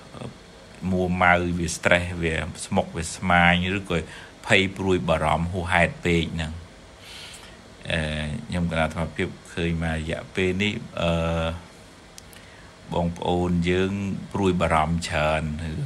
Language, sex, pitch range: English, male, 85-95 Hz